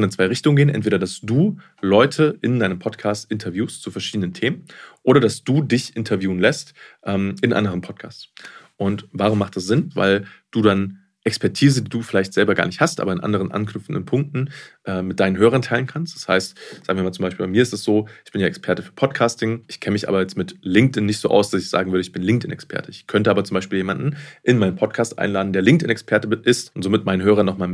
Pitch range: 95-120 Hz